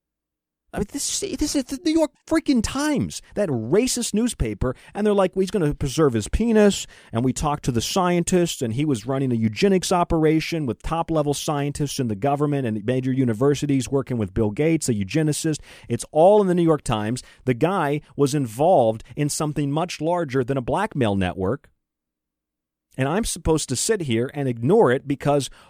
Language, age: English, 40-59